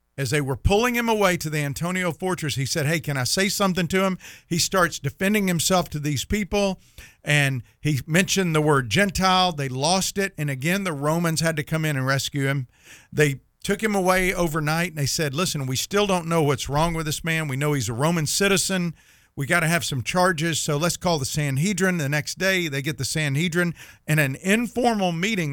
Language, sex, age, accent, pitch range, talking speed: English, male, 50-69, American, 130-185 Hz, 215 wpm